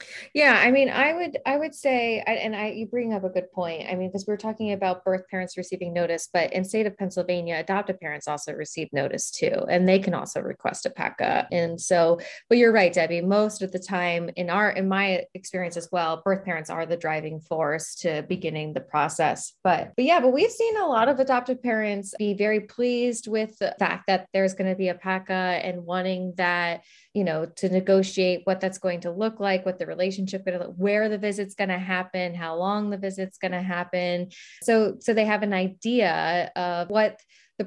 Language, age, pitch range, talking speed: English, 20-39, 180-220 Hz, 215 wpm